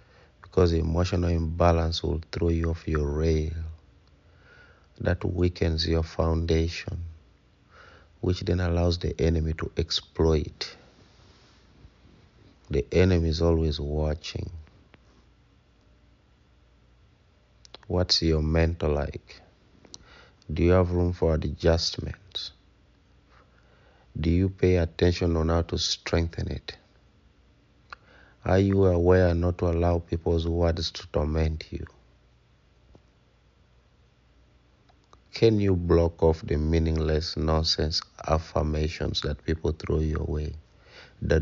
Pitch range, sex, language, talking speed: 80-85 Hz, male, English, 100 wpm